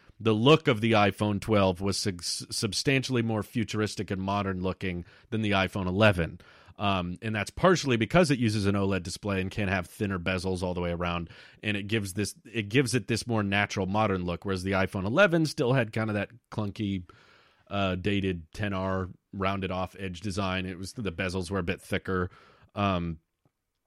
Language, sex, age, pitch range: English, male, 30-49, 95-115 Hz